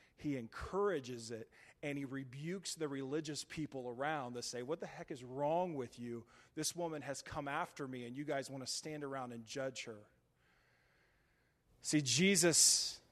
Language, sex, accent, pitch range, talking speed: English, male, American, 120-150 Hz, 170 wpm